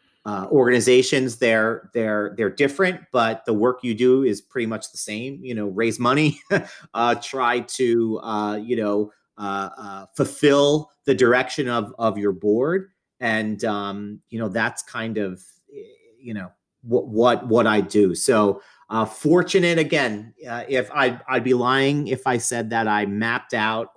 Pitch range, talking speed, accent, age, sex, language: 110-130 Hz, 165 wpm, American, 30-49, male, English